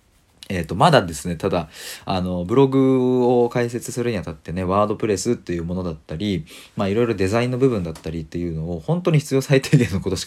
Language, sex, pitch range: Japanese, male, 85-105 Hz